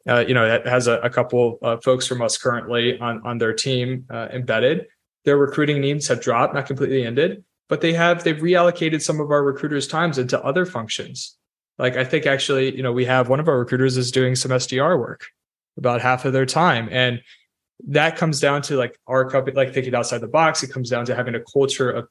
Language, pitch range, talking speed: English, 120-140 Hz, 225 wpm